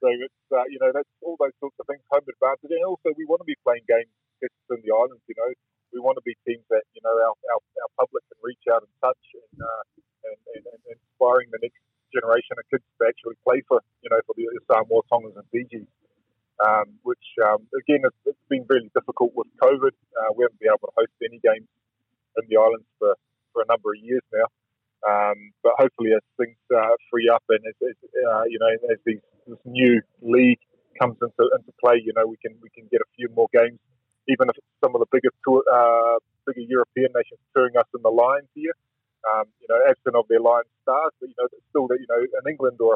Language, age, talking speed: English, 30-49, 230 wpm